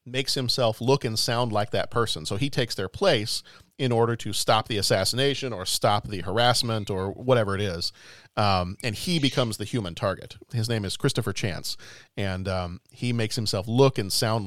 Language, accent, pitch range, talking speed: English, American, 100-130 Hz, 195 wpm